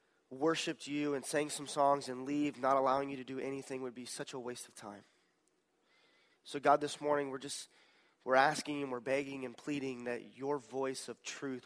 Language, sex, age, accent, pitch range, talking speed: English, male, 30-49, American, 140-170 Hz, 200 wpm